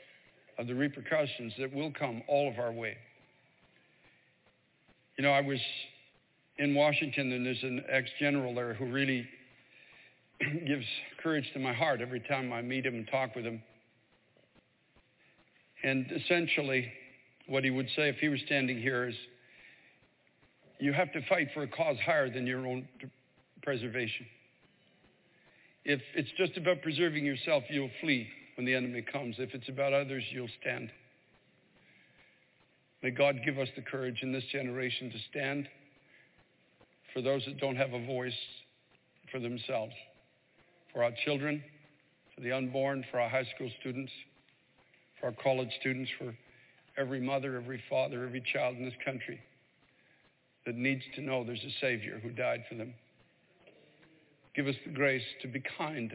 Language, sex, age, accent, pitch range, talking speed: English, male, 60-79, American, 125-140 Hz, 150 wpm